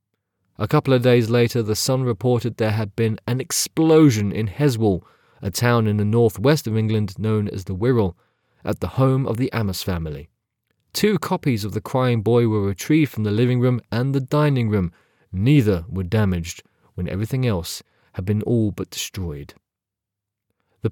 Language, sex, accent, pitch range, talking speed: English, male, British, 100-125 Hz, 175 wpm